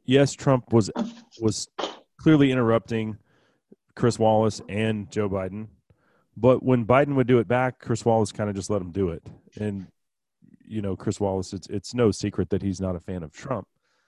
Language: English